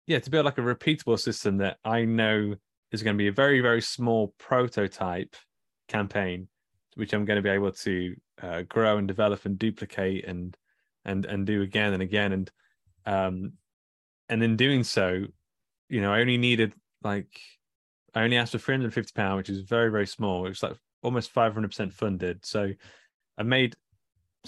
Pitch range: 100-115 Hz